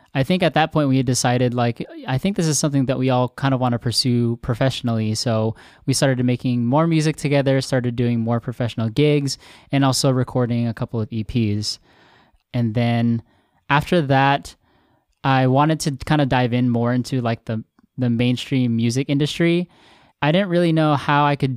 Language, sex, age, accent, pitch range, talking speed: English, male, 10-29, American, 120-140 Hz, 190 wpm